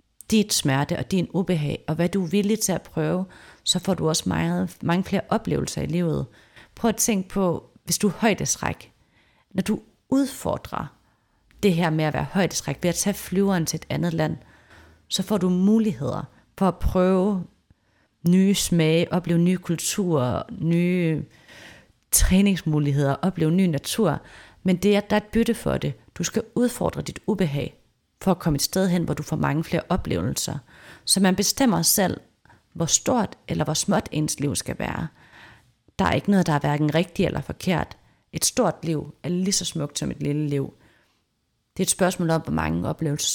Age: 30-49